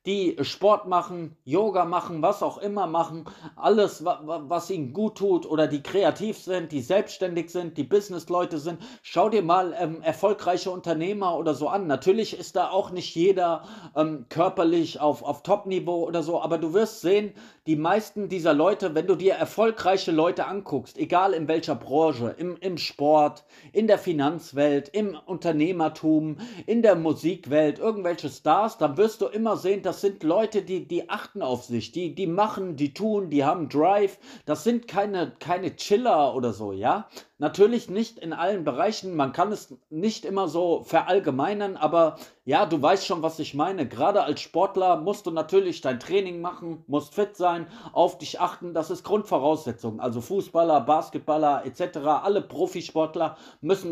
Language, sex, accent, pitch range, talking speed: German, male, German, 155-195 Hz, 175 wpm